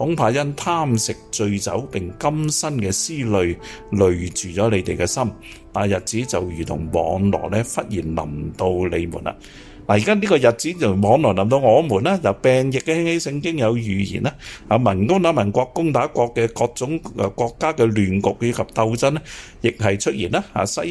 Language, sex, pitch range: Chinese, male, 95-125 Hz